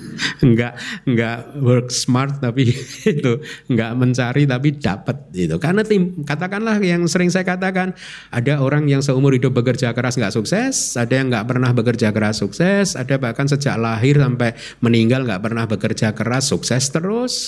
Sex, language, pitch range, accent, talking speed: male, Indonesian, 115-150 Hz, native, 155 wpm